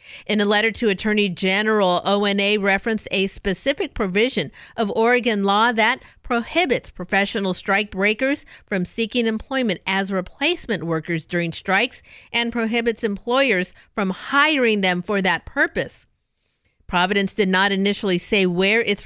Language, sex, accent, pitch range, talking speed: English, female, American, 185-225 Hz, 135 wpm